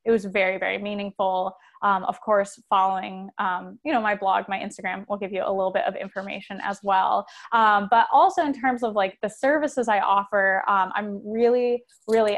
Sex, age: female, 10-29